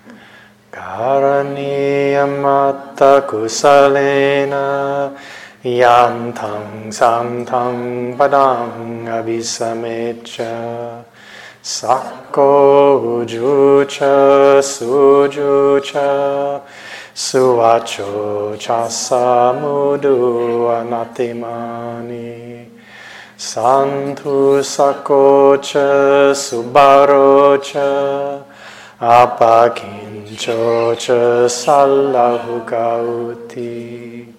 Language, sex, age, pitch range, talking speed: English, male, 30-49, 120-140 Hz, 35 wpm